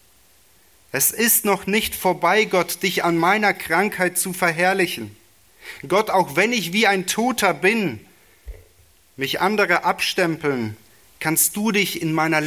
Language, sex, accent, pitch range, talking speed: German, male, German, 120-180 Hz, 135 wpm